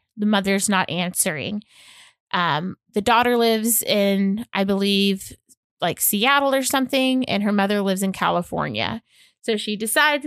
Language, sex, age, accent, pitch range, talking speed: English, female, 20-39, American, 185-220 Hz, 140 wpm